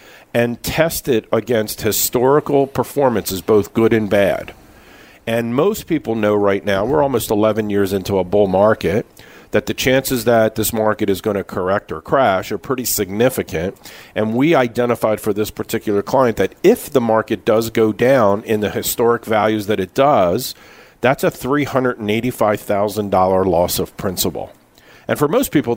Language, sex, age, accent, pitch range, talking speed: English, male, 50-69, American, 105-135 Hz, 165 wpm